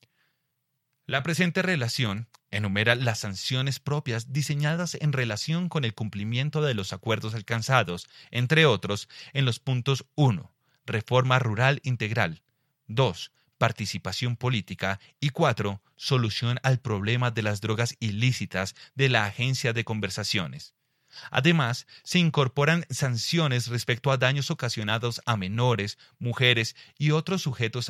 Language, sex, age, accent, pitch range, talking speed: Spanish, male, 30-49, Colombian, 110-140 Hz, 125 wpm